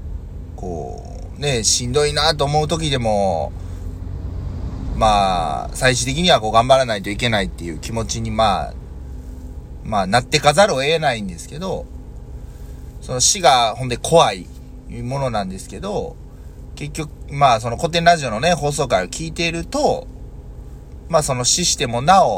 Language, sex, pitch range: Japanese, male, 85-145 Hz